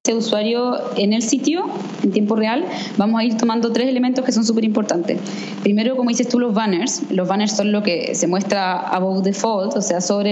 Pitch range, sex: 190-235 Hz, female